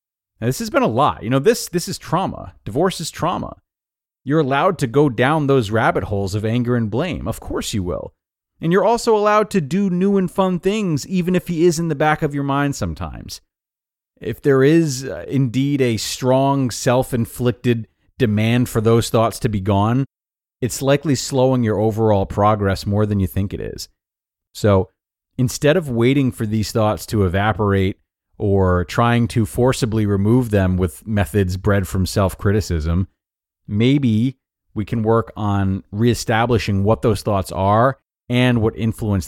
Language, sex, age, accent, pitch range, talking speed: English, male, 30-49, American, 100-130 Hz, 175 wpm